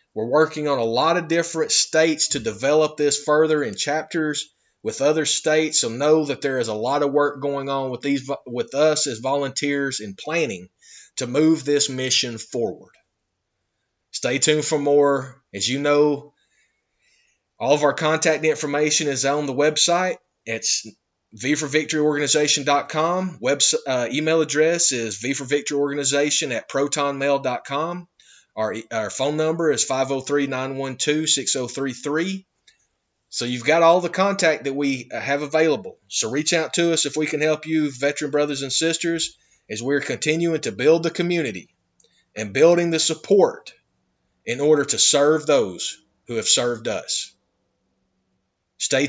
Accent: American